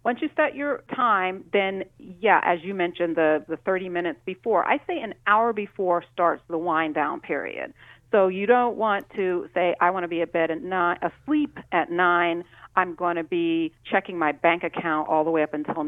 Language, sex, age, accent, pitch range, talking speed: English, female, 50-69, American, 160-195 Hz, 210 wpm